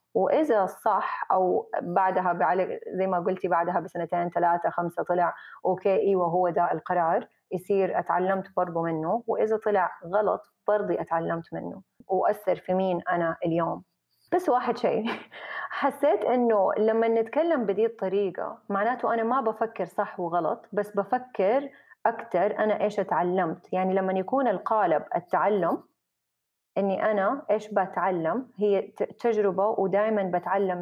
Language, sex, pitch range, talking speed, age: Arabic, female, 180-215 Hz, 130 wpm, 30-49